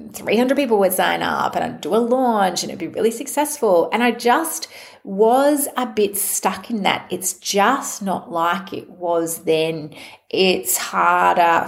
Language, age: English, 30-49